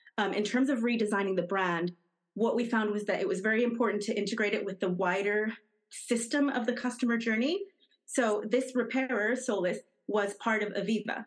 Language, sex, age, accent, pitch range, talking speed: English, female, 30-49, American, 195-240 Hz, 185 wpm